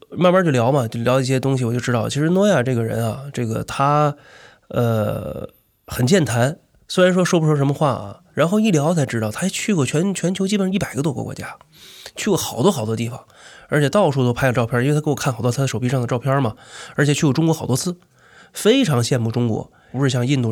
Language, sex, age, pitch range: Chinese, male, 20-39, 120-145 Hz